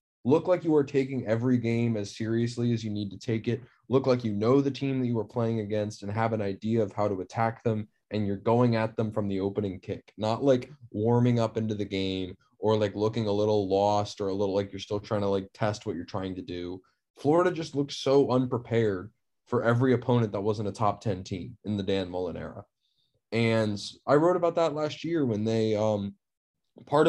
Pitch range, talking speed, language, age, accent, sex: 105-135 Hz, 225 wpm, English, 20-39, American, male